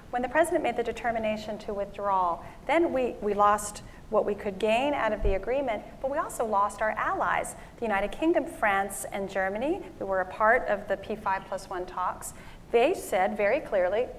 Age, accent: 40-59, American